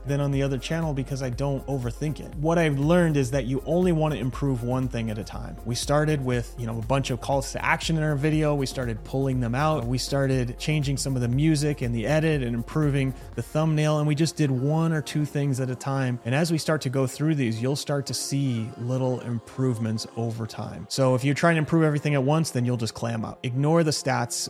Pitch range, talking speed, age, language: 120-145 Hz, 245 wpm, 30-49, English